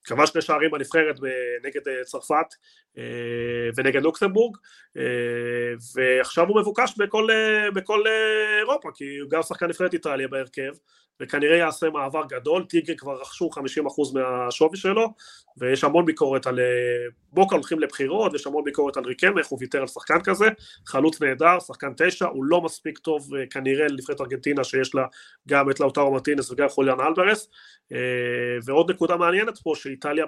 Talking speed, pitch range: 140 wpm, 135-195 Hz